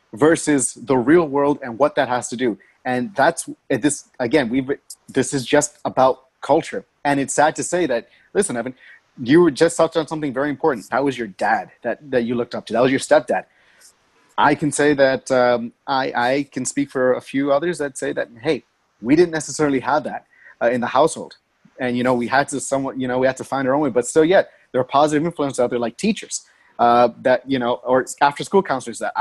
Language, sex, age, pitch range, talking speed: English, male, 30-49, 125-155 Hz, 230 wpm